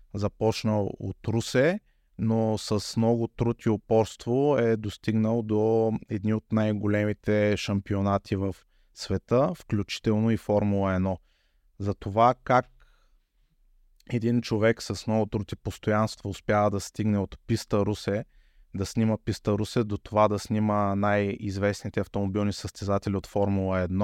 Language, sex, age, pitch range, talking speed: Bulgarian, male, 20-39, 95-110 Hz, 125 wpm